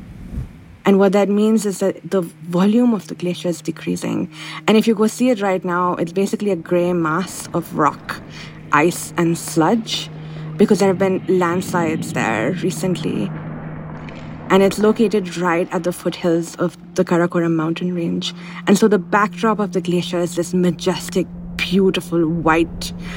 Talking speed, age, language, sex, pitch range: 160 wpm, 20-39, English, female, 165-185 Hz